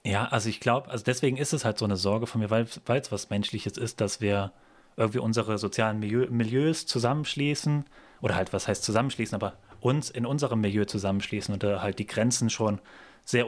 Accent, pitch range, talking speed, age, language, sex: German, 100-120 Hz, 200 wpm, 30-49, German, male